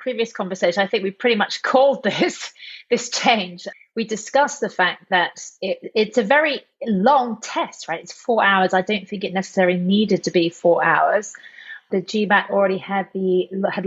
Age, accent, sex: 30-49, British, female